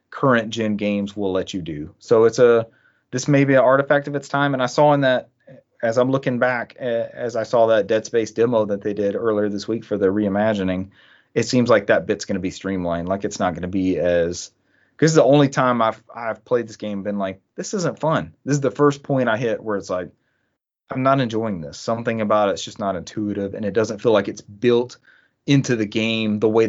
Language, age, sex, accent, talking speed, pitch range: English, 30-49, male, American, 235 wpm, 105-130 Hz